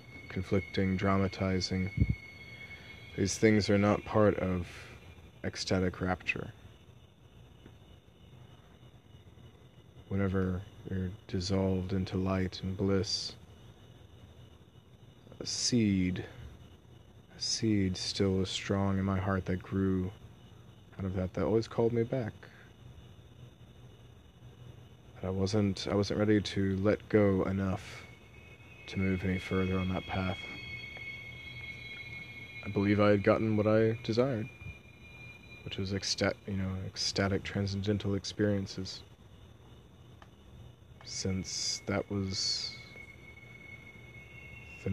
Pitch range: 95-115 Hz